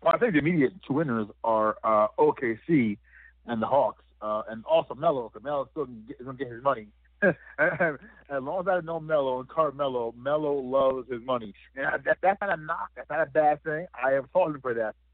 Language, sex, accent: English, male, American